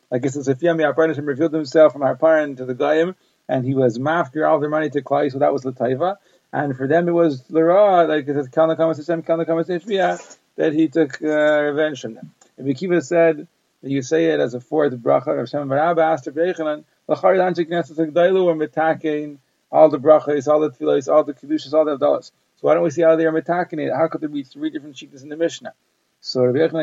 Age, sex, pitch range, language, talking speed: 40-59, male, 145-165 Hz, English, 225 wpm